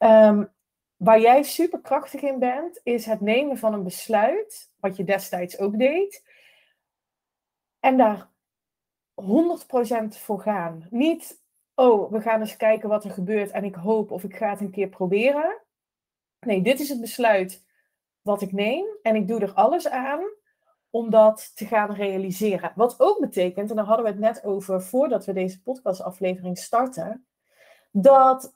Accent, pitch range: Dutch, 190-250 Hz